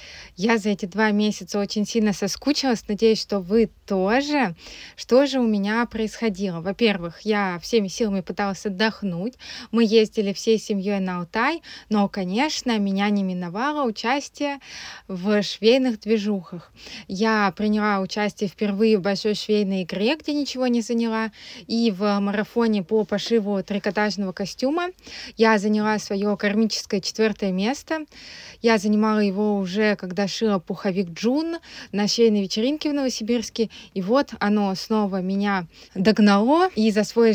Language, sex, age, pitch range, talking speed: Russian, female, 20-39, 200-230 Hz, 135 wpm